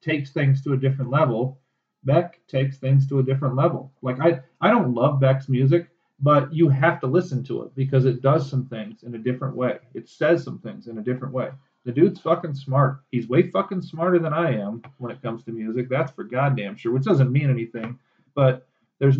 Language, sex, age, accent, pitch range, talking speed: English, male, 40-59, American, 120-145 Hz, 220 wpm